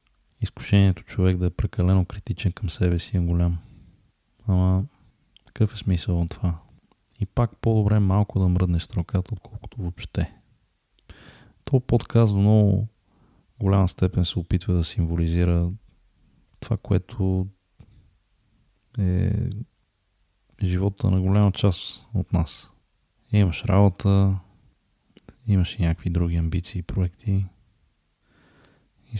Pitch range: 85-105 Hz